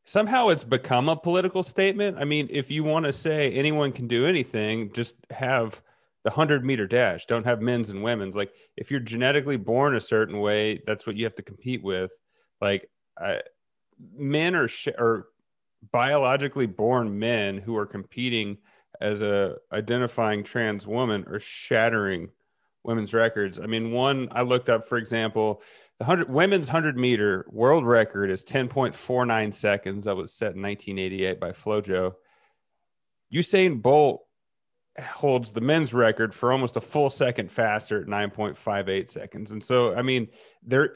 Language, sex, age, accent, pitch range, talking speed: English, male, 30-49, American, 105-135 Hz, 160 wpm